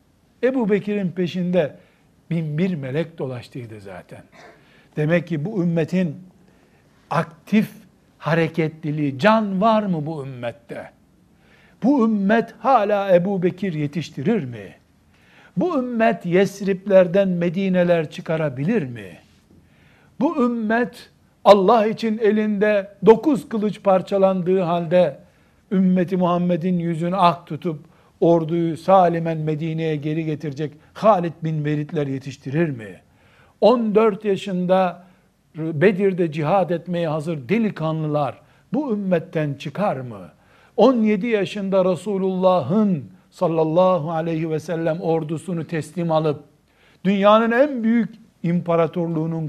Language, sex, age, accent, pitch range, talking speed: Turkish, male, 60-79, native, 155-195 Hz, 100 wpm